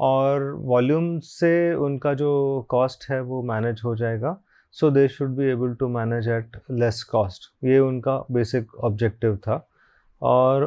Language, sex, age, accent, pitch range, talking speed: Hindi, male, 30-49, native, 125-160 Hz, 150 wpm